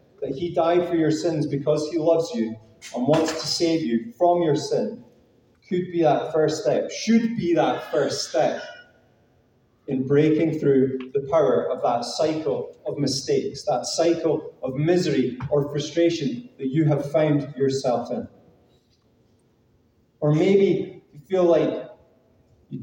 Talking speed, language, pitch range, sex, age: 145 wpm, English, 130-165 Hz, male, 30-49